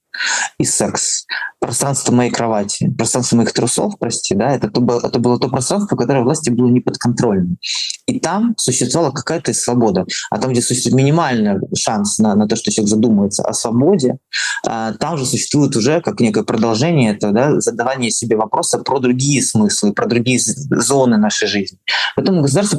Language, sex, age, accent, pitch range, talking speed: Russian, male, 20-39, native, 115-150 Hz, 165 wpm